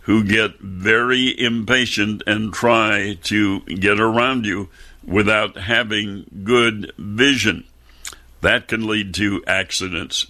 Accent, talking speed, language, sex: American, 110 wpm, English, male